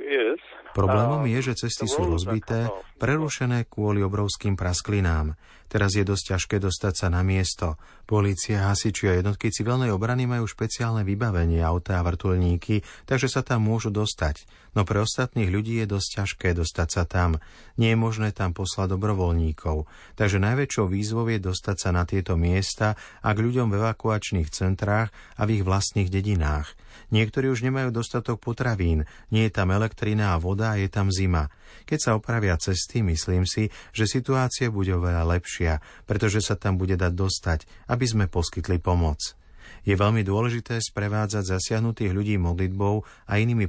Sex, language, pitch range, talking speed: male, Slovak, 90-110 Hz, 160 wpm